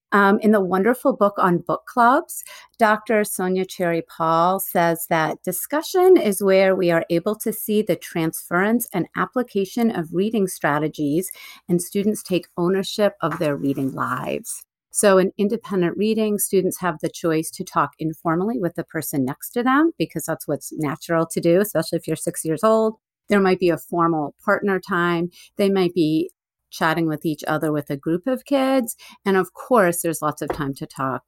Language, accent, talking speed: English, American, 180 wpm